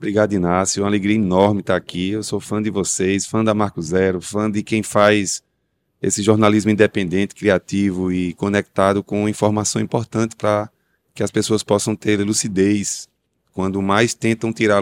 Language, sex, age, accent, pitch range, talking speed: Portuguese, male, 20-39, Brazilian, 95-115 Hz, 165 wpm